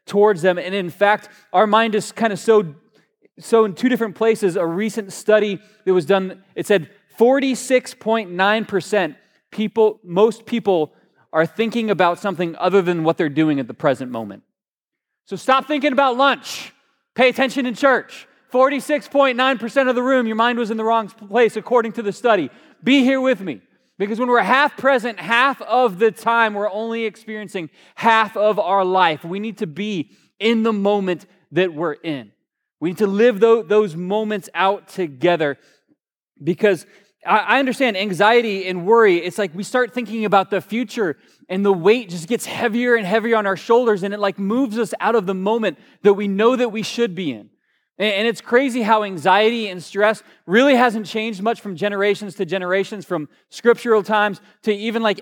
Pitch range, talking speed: 190-230 Hz, 180 wpm